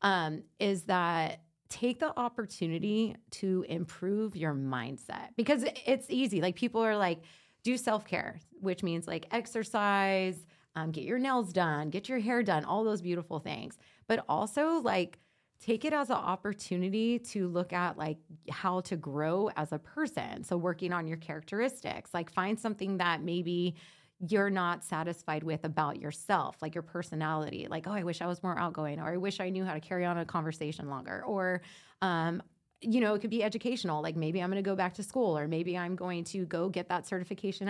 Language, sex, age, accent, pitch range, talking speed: English, female, 30-49, American, 165-215 Hz, 190 wpm